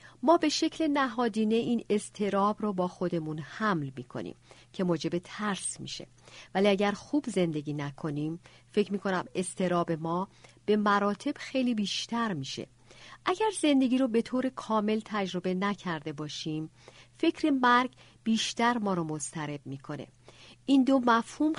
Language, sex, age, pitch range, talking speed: Persian, female, 50-69, 165-235 Hz, 135 wpm